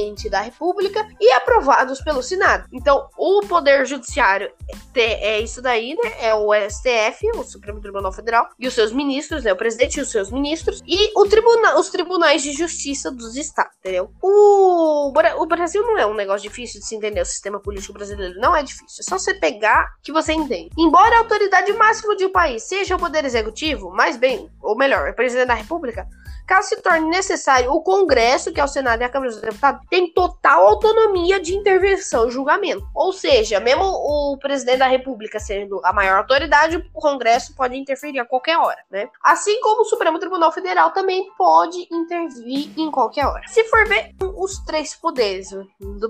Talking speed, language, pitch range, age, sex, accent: 190 wpm, Portuguese, 260-405 Hz, 10-29, female, Brazilian